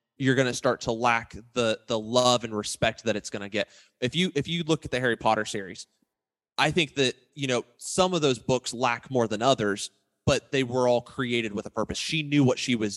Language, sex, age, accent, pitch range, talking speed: English, male, 20-39, American, 110-130 Hz, 240 wpm